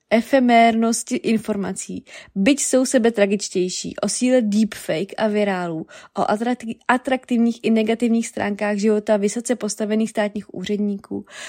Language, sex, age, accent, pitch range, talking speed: Czech, female, 20-39, native, 195-225 Hz, 110 wpm